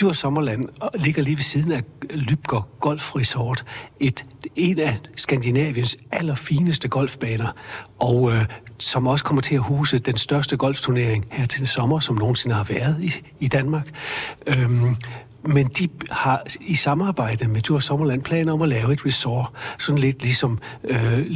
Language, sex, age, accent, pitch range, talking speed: Danish, male, 60-79, native, 120-155 Hz, 155 wpm